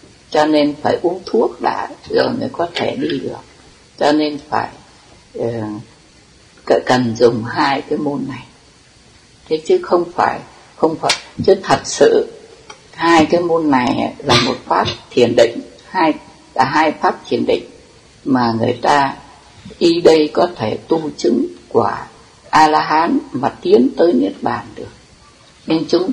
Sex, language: female, Vietnamese